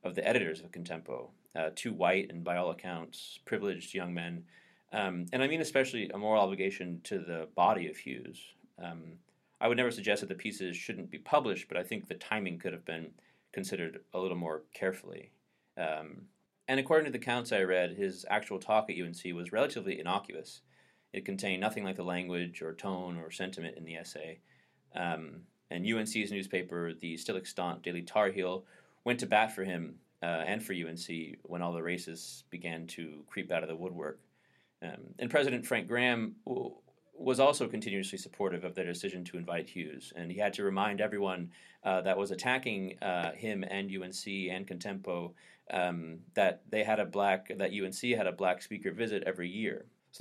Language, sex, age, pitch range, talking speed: English, male, 30-49, 85-110 Hz, 190 wpm